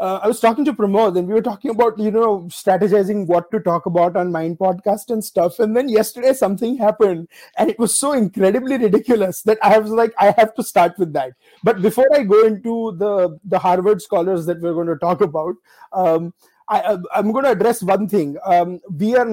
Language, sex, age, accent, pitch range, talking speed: English, male, 30-49, Indian, 165-215 Hz, 215 wpm